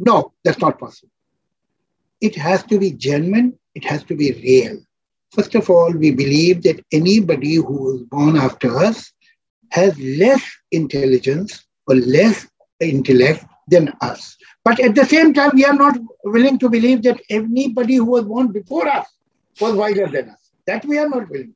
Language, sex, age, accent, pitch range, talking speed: English, male, 60-79, Indian, 165-245 Hz, 170 wpm